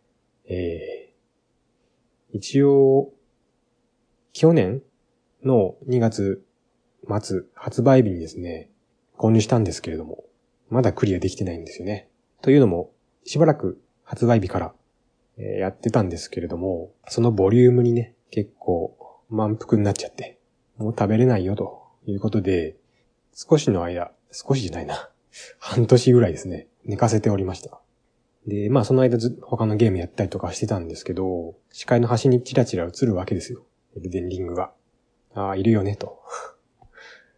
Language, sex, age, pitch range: Japanese, male, 20-39, 95-125 Hz